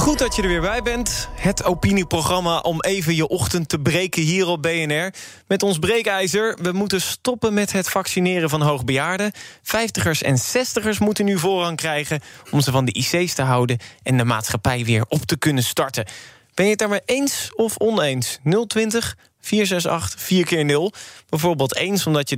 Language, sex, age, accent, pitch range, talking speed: Dutch, male, 20-39, Dutch, 140-195 Hz, 170 wpm